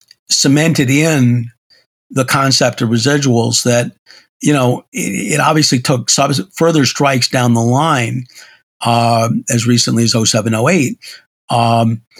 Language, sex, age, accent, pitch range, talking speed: English, male, 50-69, American, 115-135 Hz, 130 wpm